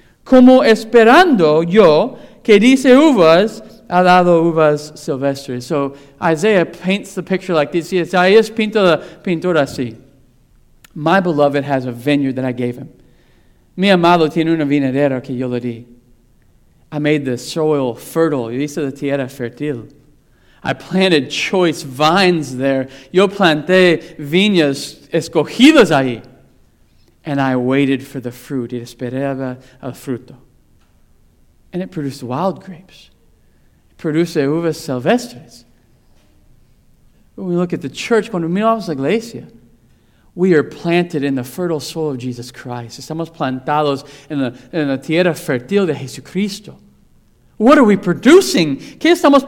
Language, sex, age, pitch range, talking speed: English, male, 40-59, 135-190 Hz, 140 wpm